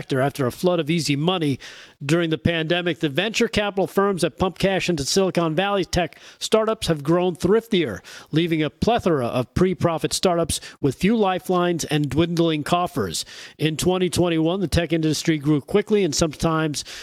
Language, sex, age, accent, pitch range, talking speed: English, male, 40-59, American, 150-180 Hz, 160 wpm